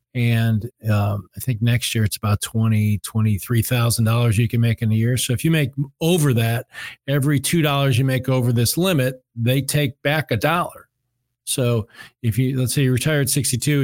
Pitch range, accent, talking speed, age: 120-150 Hz, American, 200 wpm, 40-59